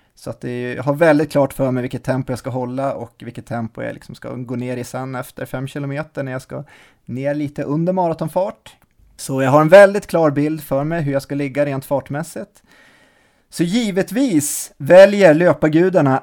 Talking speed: 200 wpm